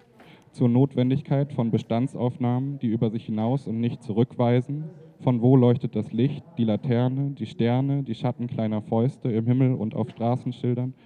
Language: German